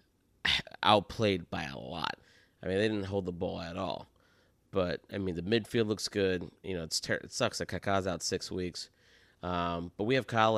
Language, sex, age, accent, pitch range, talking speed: English, male, 20-39, American, 95-110 Hz, 205 wpm